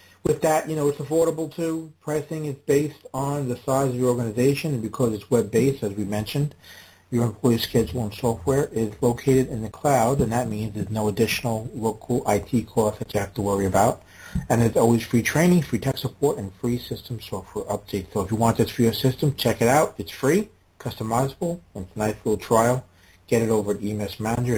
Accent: American